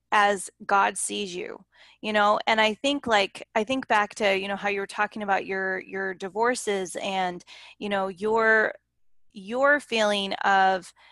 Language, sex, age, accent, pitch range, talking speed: English, female, 20-39, American, 195-225 Hz, 165 wpm